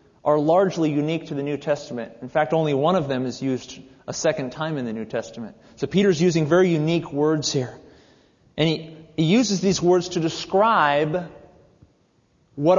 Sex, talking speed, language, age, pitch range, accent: male, 175 wpm, English, 30-49, 135-180 Hz, American